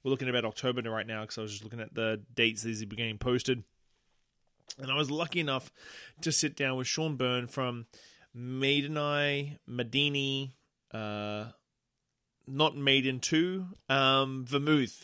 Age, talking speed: 20-39, 160 wpm